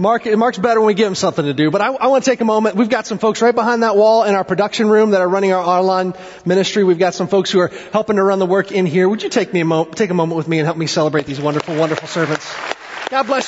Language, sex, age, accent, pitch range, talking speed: English, male, 30-49, American, 155-195 Hz, 310 wpm